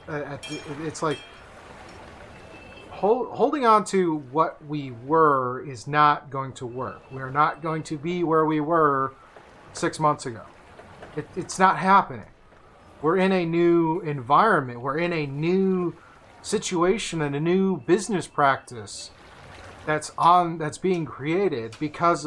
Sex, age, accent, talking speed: male, 30-49, American, 125 wpm